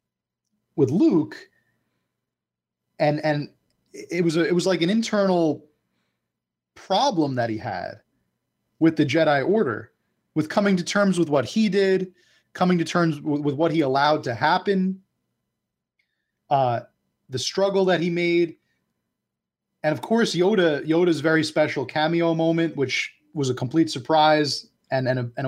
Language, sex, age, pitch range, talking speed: English, male, 30-49, 140-175 Hz, 140 wpm